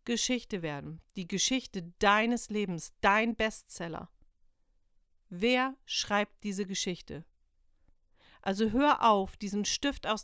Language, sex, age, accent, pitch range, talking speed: German, female, 50-69, German, 165-235 Hz, 105 wpm